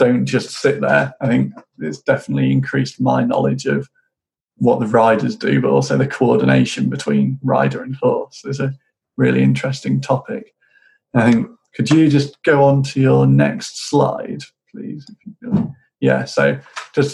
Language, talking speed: English, 155 wpm